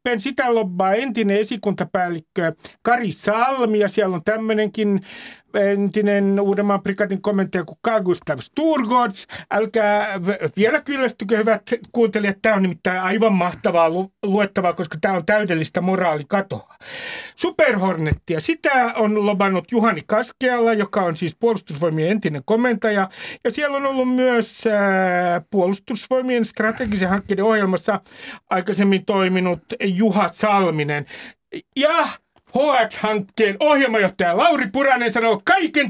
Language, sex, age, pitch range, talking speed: Finnish, male, 60-79, 185-240 Hz, 115 wpm